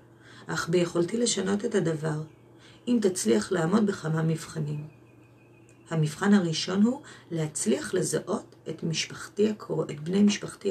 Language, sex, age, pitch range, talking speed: Hebrew, female, 30-49, 140-180 Hz, 110 wpm